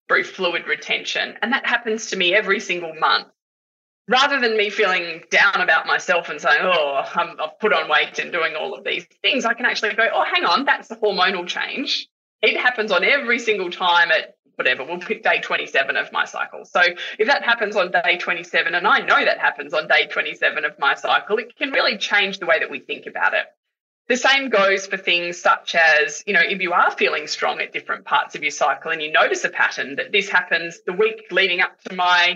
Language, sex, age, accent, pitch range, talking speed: English, female, 20-39, Australian, 175-240 Hz, 220 wpm